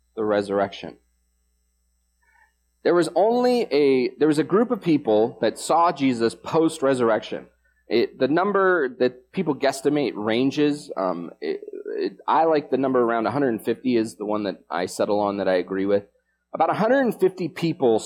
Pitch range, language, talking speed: 100-155 Hz, English, 155 wpm